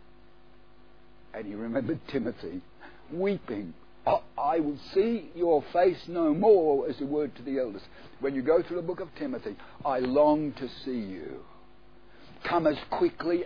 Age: 60-79